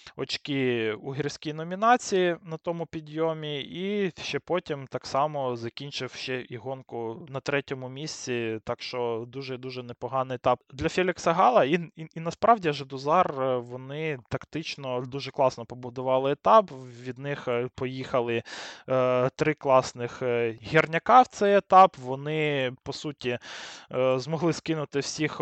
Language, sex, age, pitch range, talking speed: Ukrainian, male, 20-39, 130-155 Hz, 125 wpm